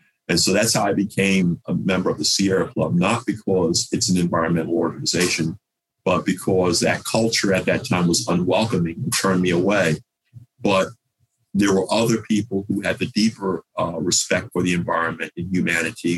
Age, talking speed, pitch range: 50-69, 175 wpm, 90-105 Hz